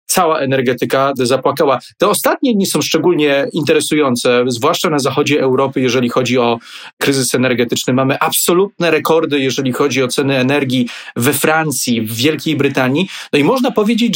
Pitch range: 130-160 Hz